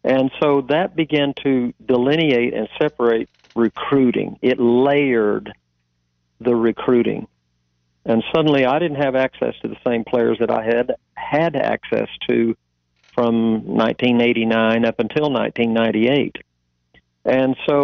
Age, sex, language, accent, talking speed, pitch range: 50-69, male, English, American, 115 wpm, 110-140 Hz